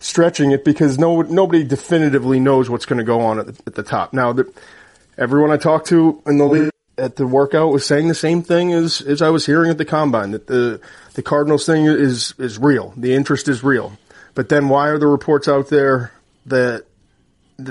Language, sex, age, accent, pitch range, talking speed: English, male, 30-49, American, 125-150 Hz, 210 wpm